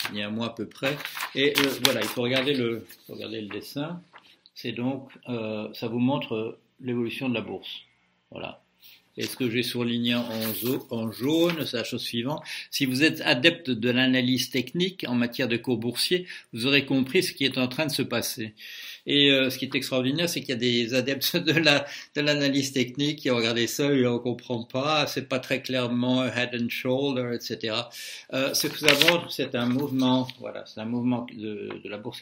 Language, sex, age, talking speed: French, male, 60-79, 210 wpm